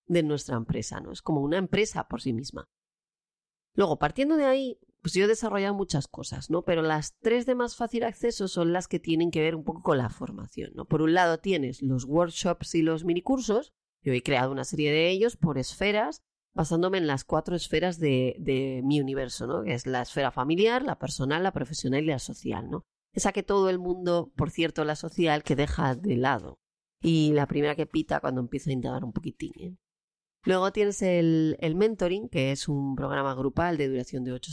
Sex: female